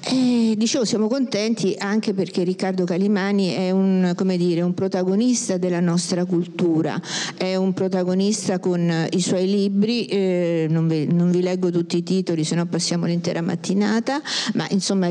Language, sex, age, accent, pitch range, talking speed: Italian, female, 50-69, native, 175-210 Hz, 160 wpm